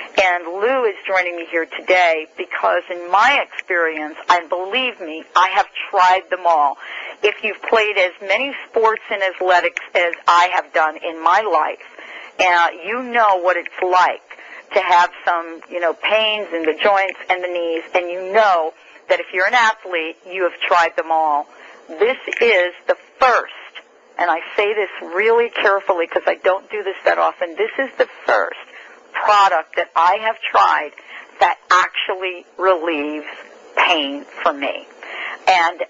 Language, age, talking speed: English, 50-69, 160 wpm